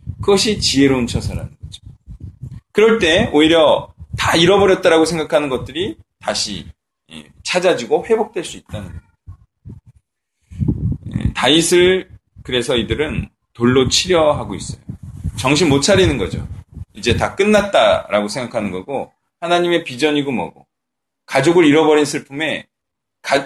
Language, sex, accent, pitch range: Korean, male, native, 120-200 Hz